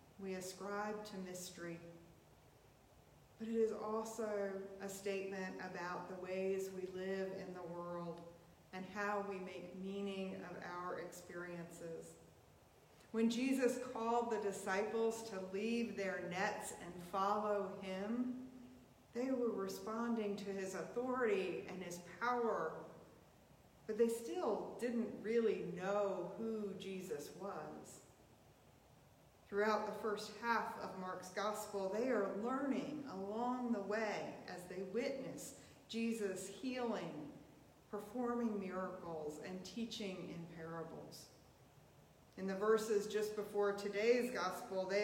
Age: 40-59